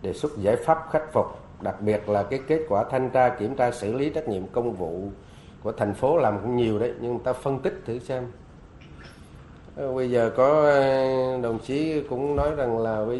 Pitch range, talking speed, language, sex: 125-160 Hz, 210 wpm, Vietnamese, male